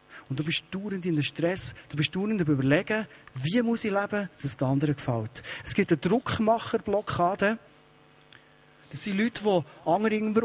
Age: 40-59